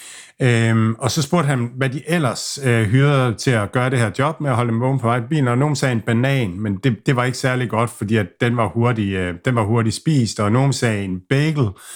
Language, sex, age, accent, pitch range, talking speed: Danish, male, 50-69, native, 110-135 Hz, 240 wpm